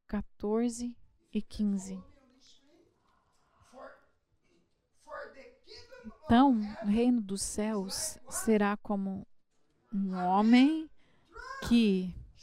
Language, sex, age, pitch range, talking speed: English, female, 30-49, 210-285 Hz, 65 wpm